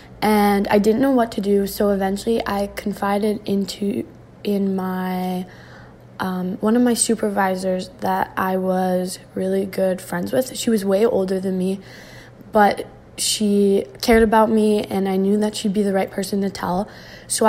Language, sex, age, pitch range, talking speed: English, female, 10-29, 195-220 Hz, 170 wpm